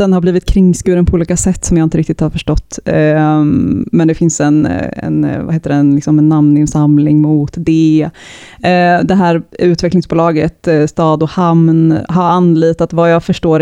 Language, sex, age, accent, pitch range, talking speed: Swedish, female, 20-39, native, 150-175 Hz, 165 wpm